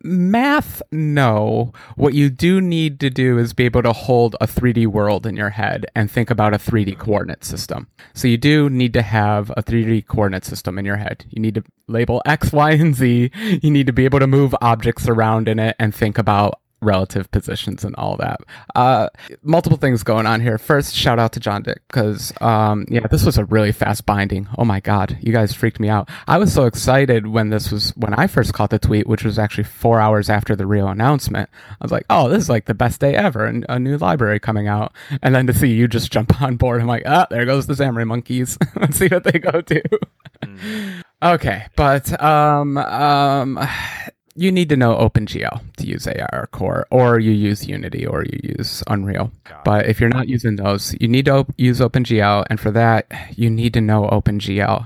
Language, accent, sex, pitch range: English, American, male, 105-135 Hz